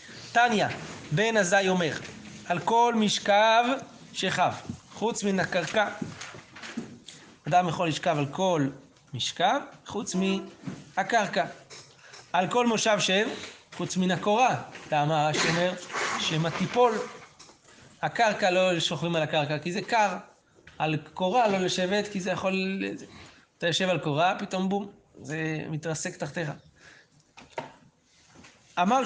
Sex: male